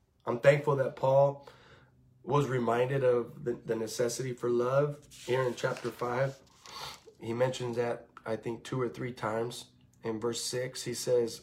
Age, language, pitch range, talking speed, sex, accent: 20-39, English, 120-140 Hz, 150 wpm, male, American